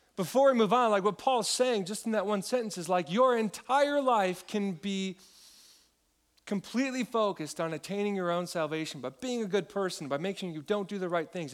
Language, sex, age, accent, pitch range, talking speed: English, male, 40-59, American, 175-220 Hz, 215 wpm